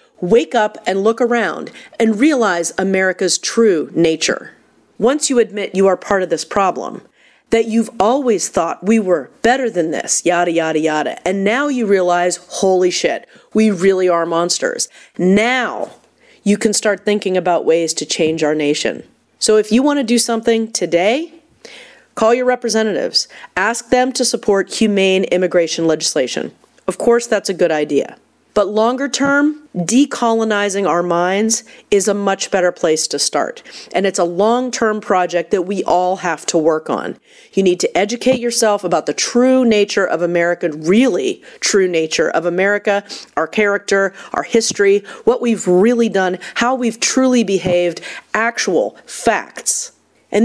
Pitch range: 180-235 Hz